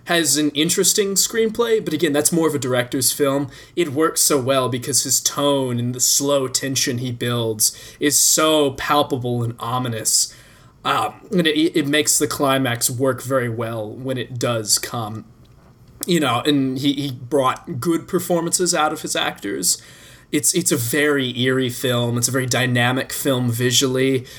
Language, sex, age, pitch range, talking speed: English, male, 20-39, 120-150 Hz, 165 wpm